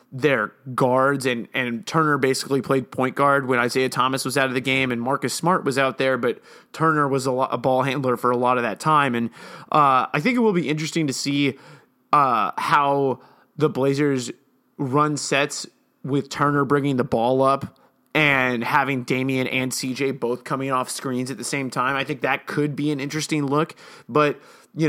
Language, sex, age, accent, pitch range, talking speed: English, male, 30-49, American, 130-150 Hz, 200 wpm